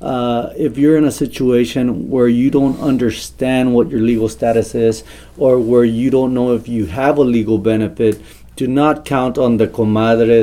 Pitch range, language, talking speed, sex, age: 115-135 Hz, English, 185 wpm, male, 30-49